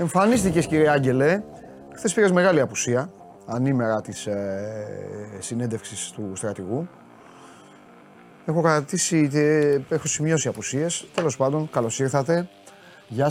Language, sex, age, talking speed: Greek, male, 30-49, 110 wpm